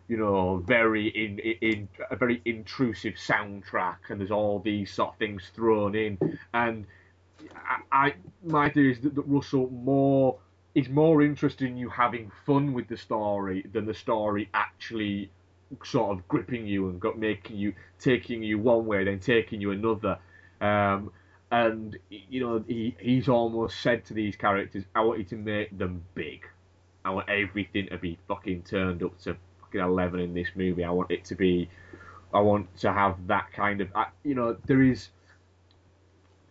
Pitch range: 95-115 Hz